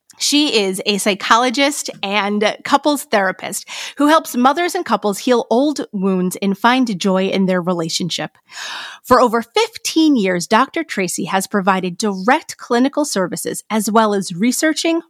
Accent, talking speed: American, 145 wpm